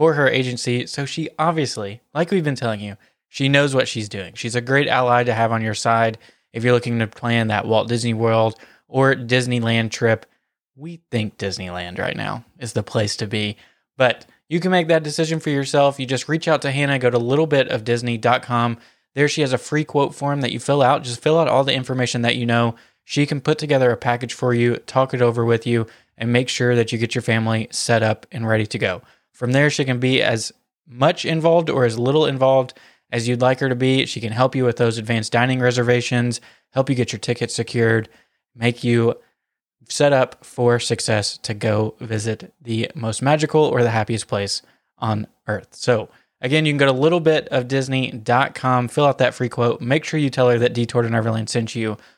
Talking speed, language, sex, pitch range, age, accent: 215 wpm, English, male, 115-135 Hz, 20-39, American